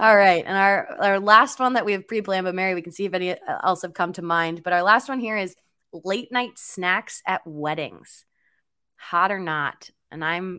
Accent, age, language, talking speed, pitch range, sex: American, 20-39, English, 220 wpm, 155-185 Hz, female